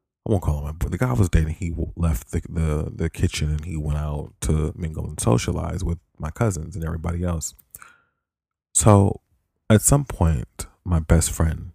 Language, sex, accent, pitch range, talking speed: English, male, American, 85-115 Hz, 190 wpm